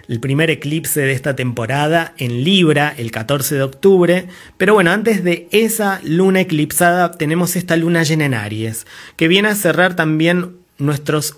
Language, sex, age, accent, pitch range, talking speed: Spanish, male, 30-49, Argentinian, 130-175 Hz, 165 wpm